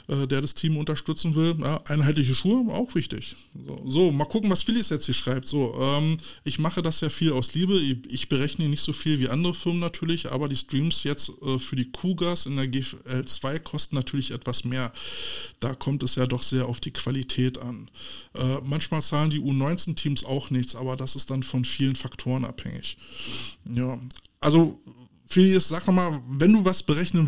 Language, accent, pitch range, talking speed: German, German, 130-165 Hz, 190 wpm